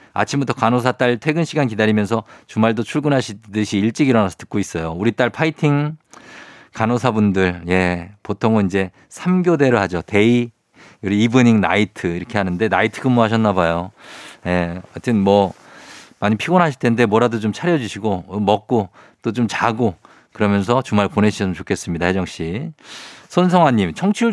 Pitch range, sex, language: 100-145 Hz, male, Korean